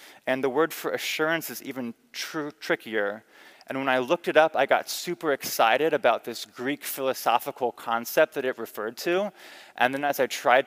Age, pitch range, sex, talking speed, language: 20-39, 120-155 Hz, male, 180 wpm, English